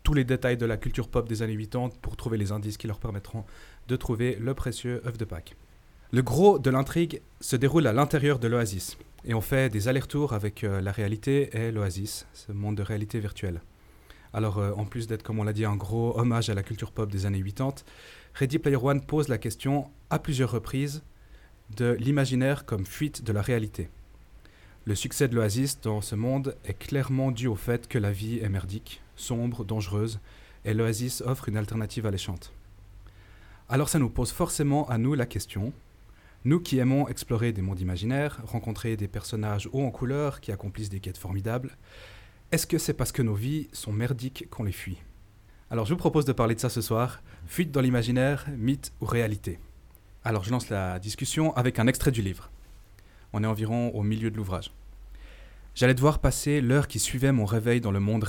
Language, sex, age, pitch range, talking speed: French, male, 30-49, 100-130 Hz, 200 wpm